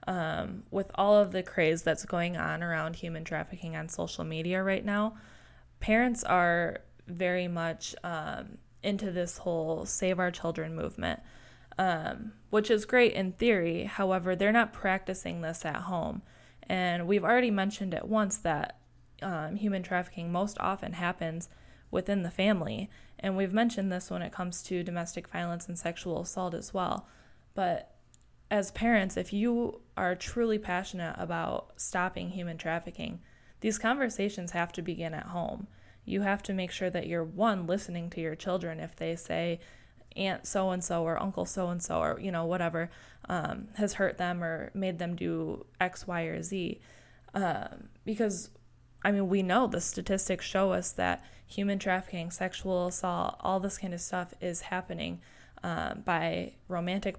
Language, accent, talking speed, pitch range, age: English, American, 160 wpm, 170-200 Hz, 10-29